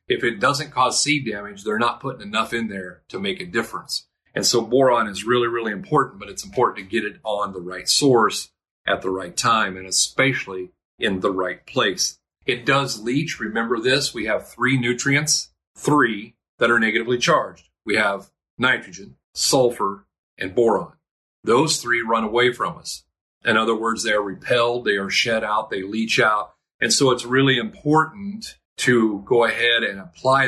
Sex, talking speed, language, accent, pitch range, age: male, 180 wpm, English, American, 95-120 Hz, 40-59